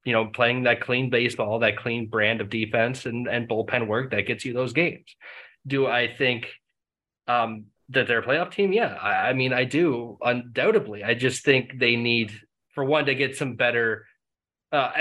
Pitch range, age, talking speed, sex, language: 115-145 Hz, 20-39, 190 wpm, male, English